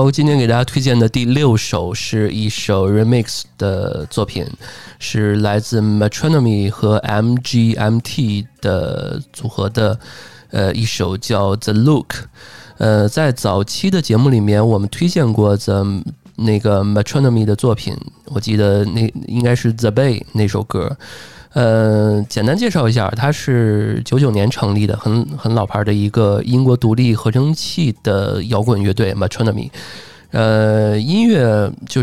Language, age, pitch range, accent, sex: Chinese, 20-39, 105-125 Hz, native, male